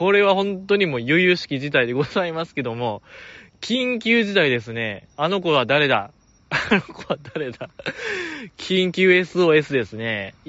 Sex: male